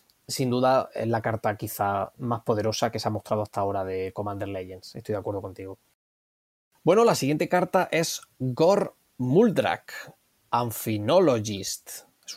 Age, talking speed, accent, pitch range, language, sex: 20-39, 145 wpm, Spanish, 115-155 Hz, Spanish, male